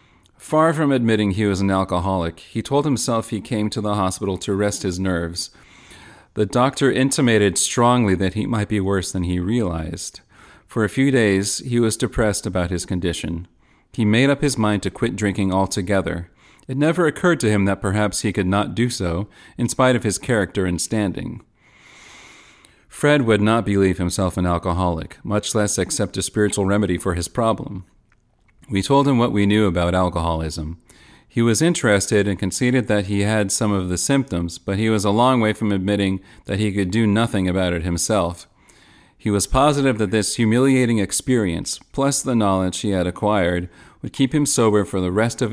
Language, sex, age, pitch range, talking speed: English, male, 40-59, 95-120 Hz, 185 wpm